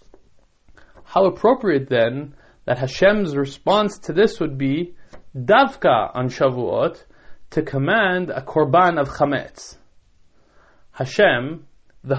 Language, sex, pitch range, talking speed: English, male, 125-175 Hz, 105 wpm